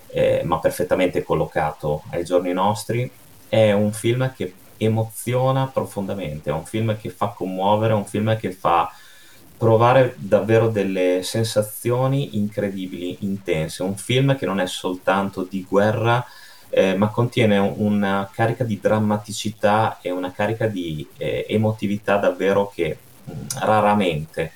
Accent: native